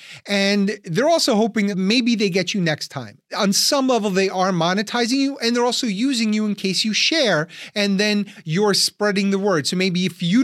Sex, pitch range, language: male, 160-205 Hz, English